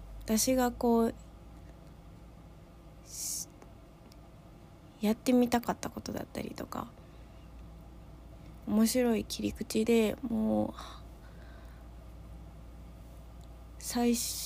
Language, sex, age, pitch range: Japanese, female, 20-39, 195-240 Hz